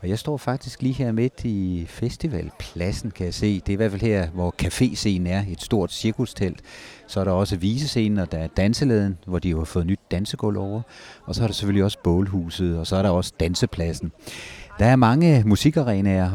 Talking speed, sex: 215 wpm, male